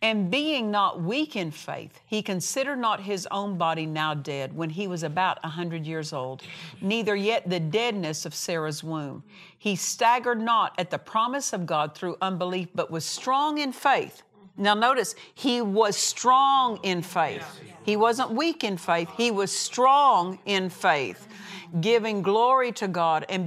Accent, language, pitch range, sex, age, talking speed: American, English, 170-230 Hz, female, 50-69, 170 wpm